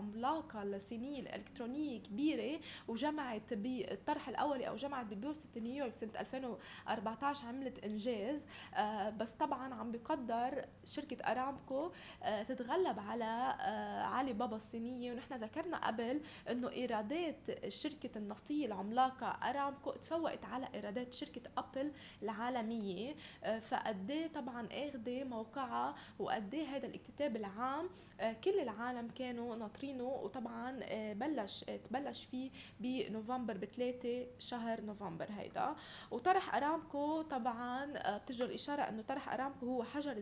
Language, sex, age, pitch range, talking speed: Arabic, female, 10-29, 225-275 Hz, 110 wpm